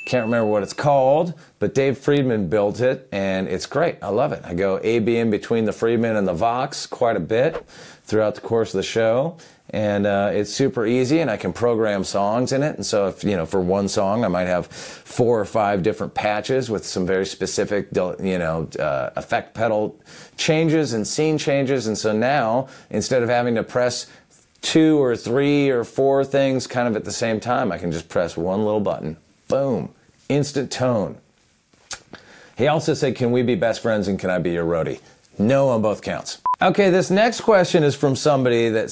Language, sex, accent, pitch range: English, male, American, 105-145 Hz